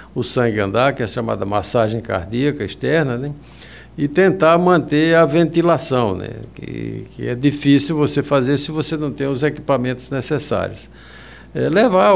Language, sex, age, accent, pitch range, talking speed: Portuguese, male, 60-79, Brazilian, 115-150 Hz, 160 wpm